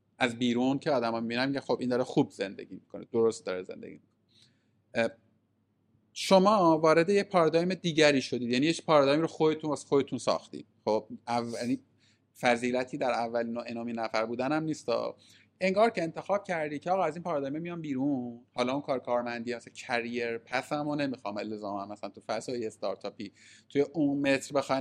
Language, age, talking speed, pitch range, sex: Persian, 30-49, 160 wpm, 115-150 Hz, male